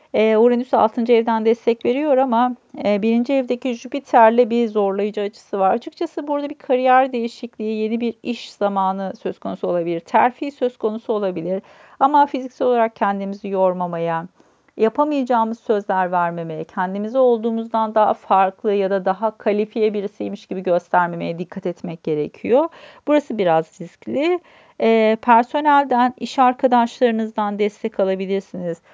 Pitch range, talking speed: 195-250 Hz, 130 wpm